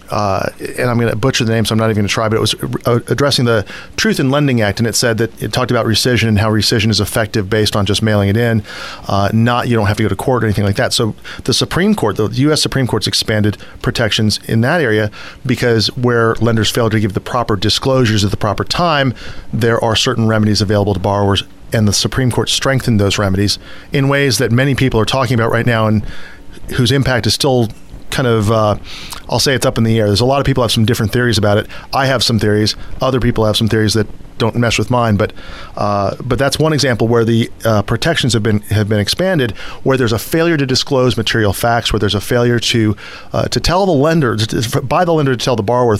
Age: 40-59